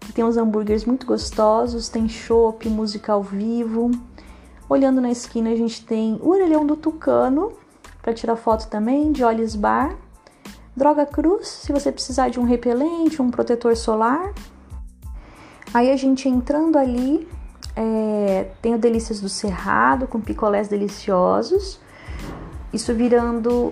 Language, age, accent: Portuguese, 30-49, Brazilian